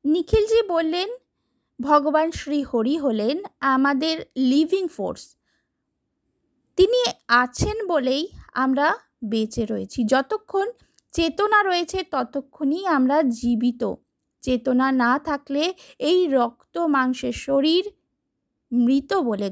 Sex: female